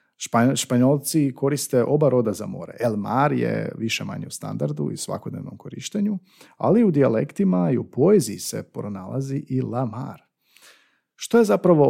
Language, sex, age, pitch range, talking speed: Croatian, male, 40-59, 115-150 Hz, 150 wpm